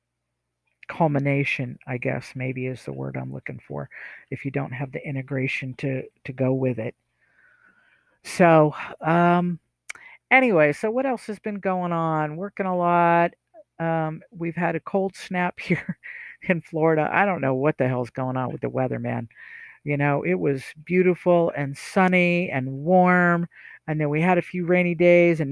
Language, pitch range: English, 140-180 Hz